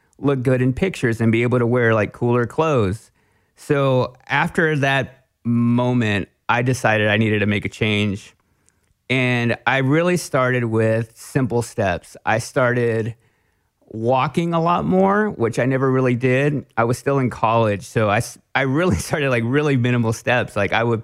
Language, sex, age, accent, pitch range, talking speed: English, male, 30-49, American, 105-130 Hz, 170 wpm